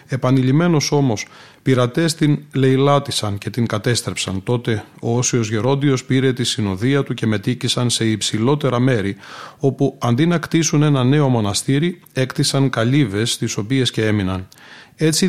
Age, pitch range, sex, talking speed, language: 30-49, 115-145 Hz, male, 135 wpm, Greek